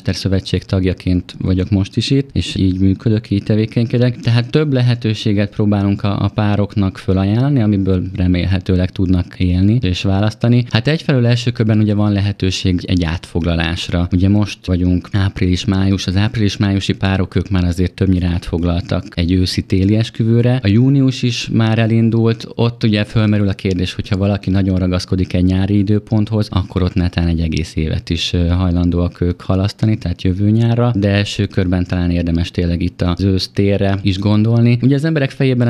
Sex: male